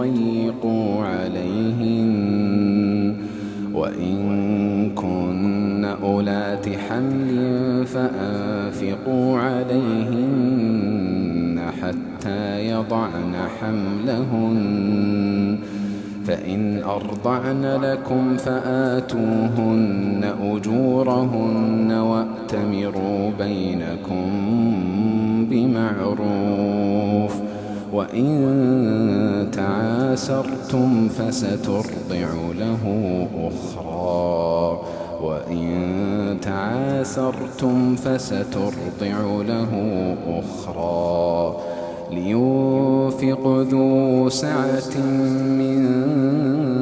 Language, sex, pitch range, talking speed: Arabic, male, 100-130 Hz, 40 wpm